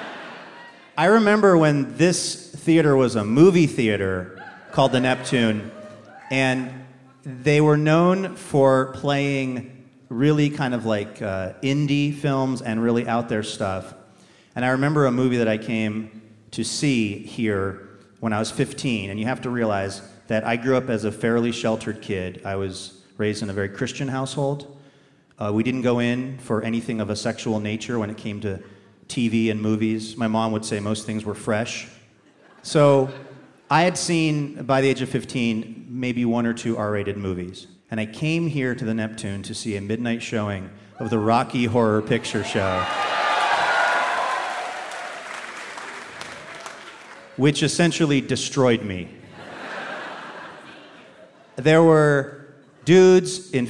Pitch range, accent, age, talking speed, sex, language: 110-140 Hz, American, 30-49, 150 wpm, male, English